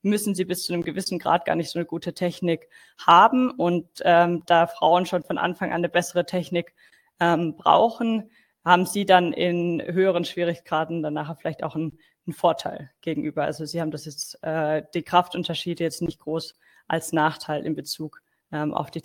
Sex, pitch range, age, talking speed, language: female, 160-185 Hz, 20-39, 180 wpm, German